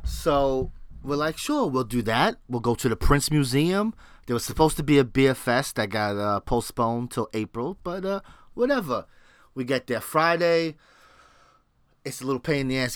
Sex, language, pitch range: male, English, 110-140 Hz